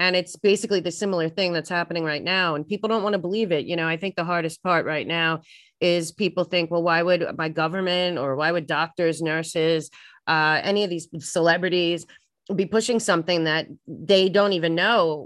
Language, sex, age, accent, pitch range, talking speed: English, female, 30-49, American, 150-175 Hz, 205 wpm